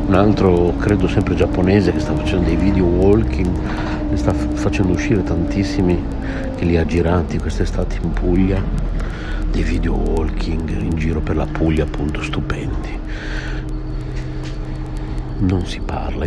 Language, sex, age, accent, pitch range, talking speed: Italian, male, 60-79, native, 75-90 Hz, 135 wpm